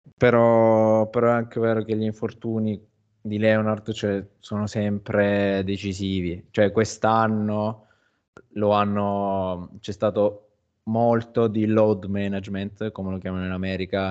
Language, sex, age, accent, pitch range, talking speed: Italian, male, 20-39, native, 100-115 Hz, 125 wpm